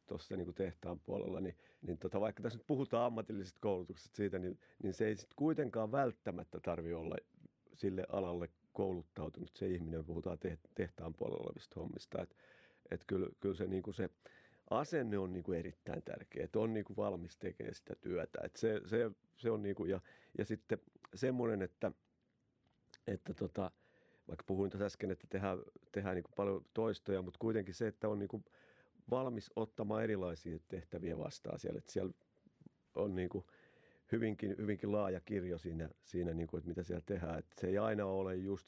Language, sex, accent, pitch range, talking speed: Finnish, male, native, 90-105 Hz, 175 wpm